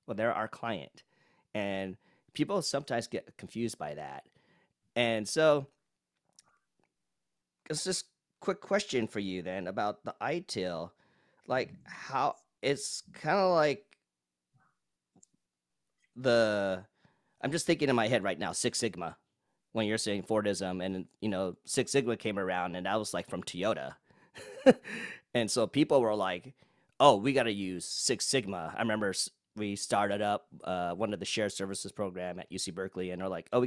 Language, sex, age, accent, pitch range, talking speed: English, male, 30-49, American, 95-130 Hz, 160 wpm